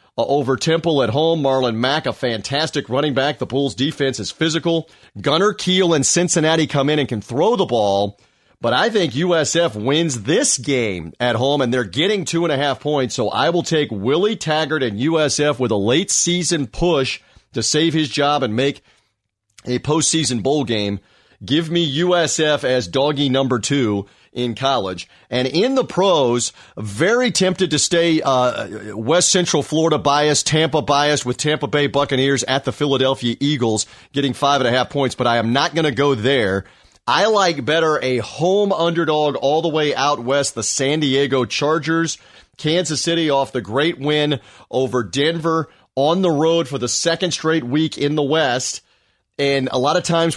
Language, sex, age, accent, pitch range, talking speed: English, male, 40-59, American, 125-160 Hz, 180 wpm